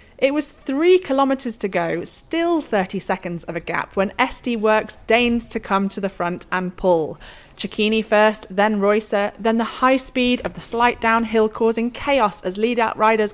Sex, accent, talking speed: female, British, 180 wpm